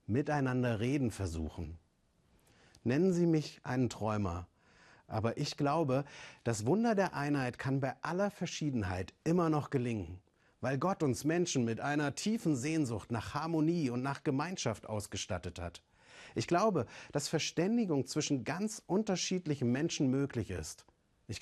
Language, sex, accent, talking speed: German, male, German, 135 wpm